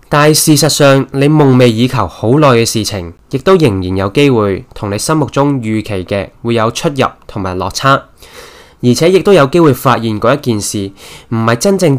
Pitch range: 110-150 Hz